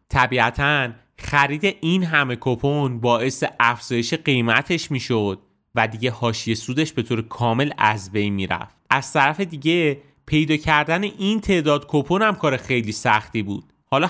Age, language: 30-49, Persian